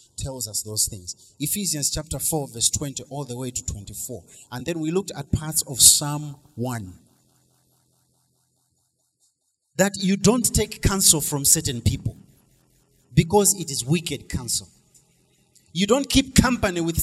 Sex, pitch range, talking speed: male, 130-205 Hz, 145 wpm